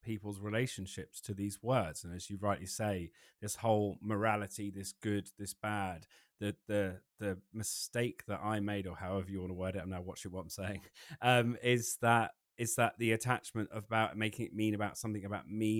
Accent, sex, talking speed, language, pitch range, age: British, male, 200 wpm, English, 95-110 Hz, 30-49